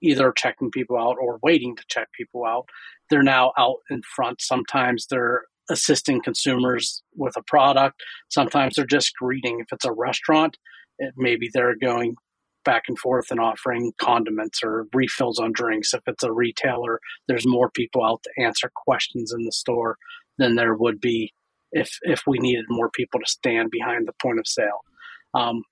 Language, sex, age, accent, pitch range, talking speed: English, male, 30-49, American, 120-150 Hz, 175 wpm